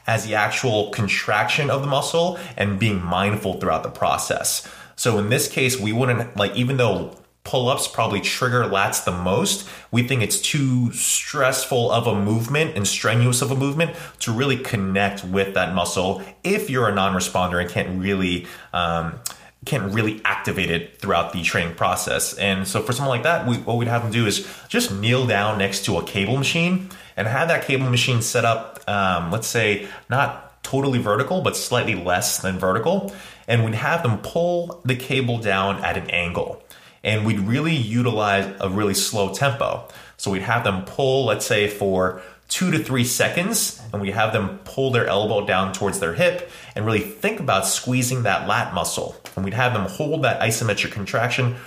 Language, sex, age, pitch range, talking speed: English, male, 30-49, 100-130 Hz, 185 wpm